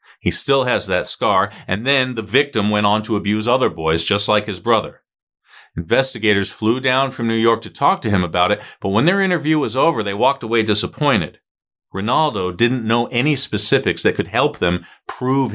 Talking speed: 195 wpm